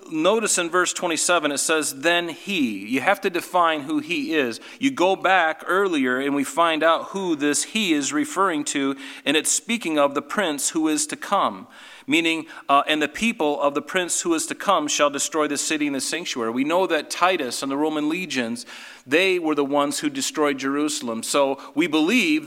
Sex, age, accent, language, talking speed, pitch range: male, 40-59, American, English, 205 wpm, 140-185 Hz